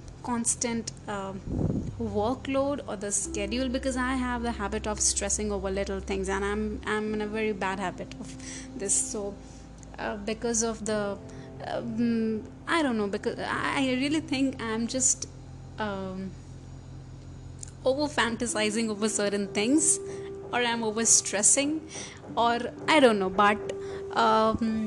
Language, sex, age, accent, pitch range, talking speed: Hindi, female, 30-49, native, 195-235 Hz, 140 wpm